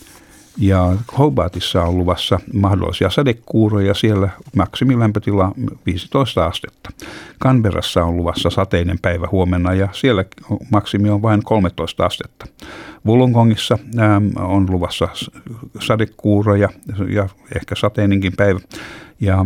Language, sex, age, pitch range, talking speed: Finnish, male, 60-79, 90-105 Hz, 100 wpm